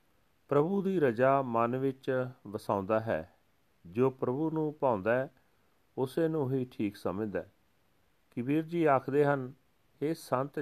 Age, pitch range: 40-59, 110-140 Hz